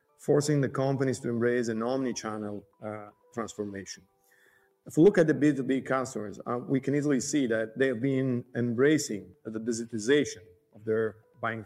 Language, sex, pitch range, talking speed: Italian, male, 115-145 Hz, 165 wpm